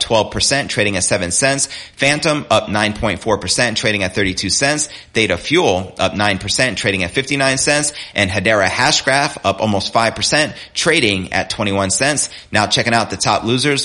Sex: male